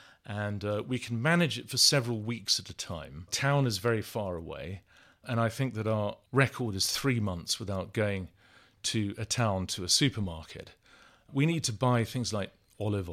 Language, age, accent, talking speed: English, 40-59, British, 185 wpm